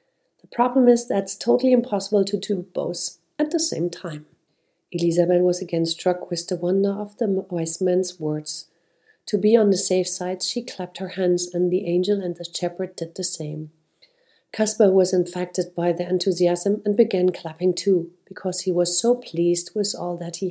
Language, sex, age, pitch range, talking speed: English, female, 50-69, 175-210 Hz, 180 wpm